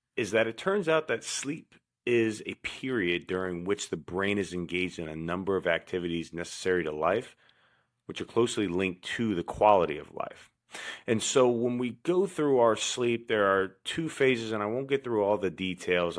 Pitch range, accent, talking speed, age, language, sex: 85-110 Hz, American, 195 wpm, 30-49, English, male